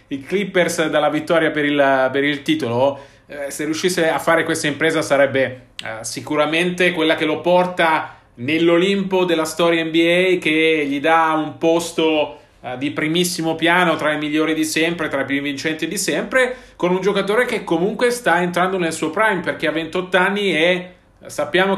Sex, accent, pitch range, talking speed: male, native, 155-180 Hz, 170 wpm